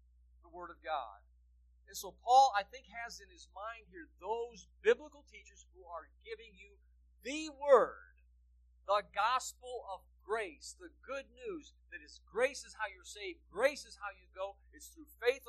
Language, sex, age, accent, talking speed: English, male, 50-69, American, 170 wpm